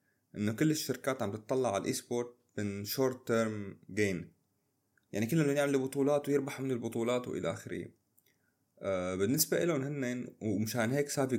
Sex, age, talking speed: male, 30-49, 140 wpm